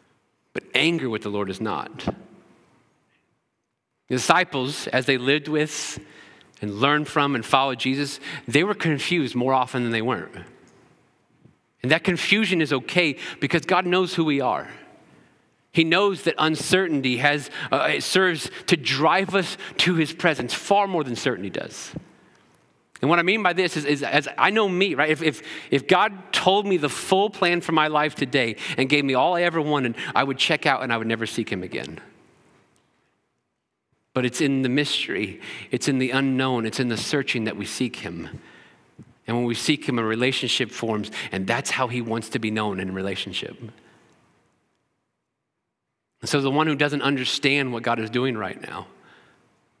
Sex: male